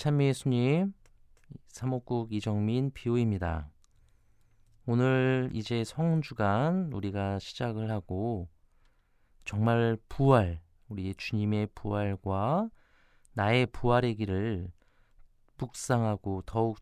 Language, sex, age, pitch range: Korean, male, 40-59, 95-130 Hz